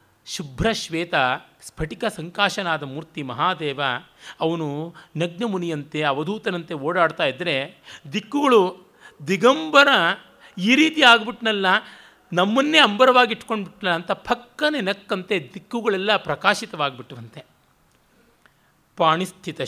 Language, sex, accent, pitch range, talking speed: Kannada, male, native, 150-190 Hz, 75 wpm